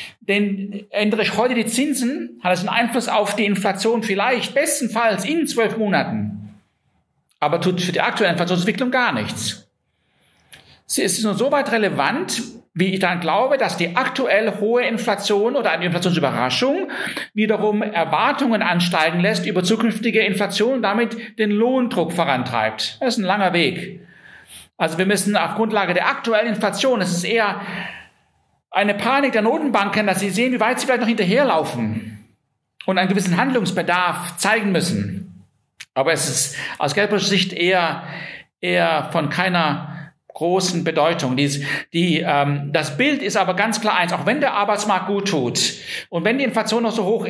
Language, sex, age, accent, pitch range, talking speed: German, male, 50-69, German, 175-220 Hz, 160 wpm